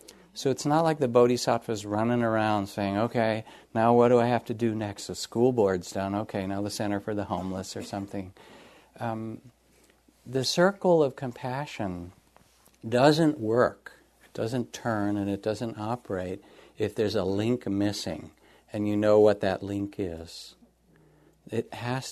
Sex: male